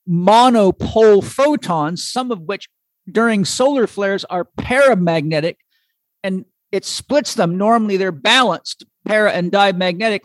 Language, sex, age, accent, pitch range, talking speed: English, male, 50-69, American, 180-230 Hz, 115 wpm